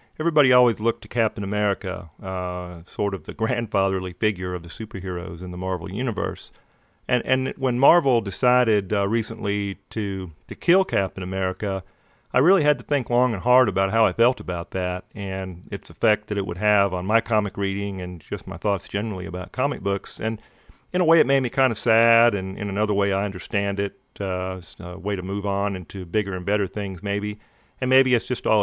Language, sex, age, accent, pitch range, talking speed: English, male, 40-59, American, 95-115 Hz, 205 wpm